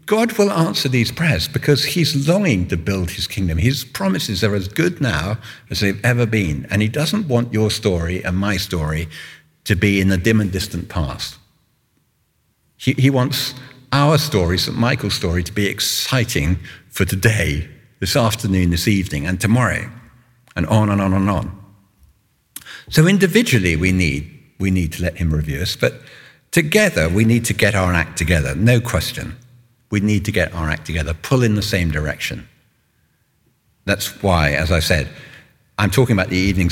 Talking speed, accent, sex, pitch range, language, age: 180 wpm, British, male, 90-130 Hz, English, 50-69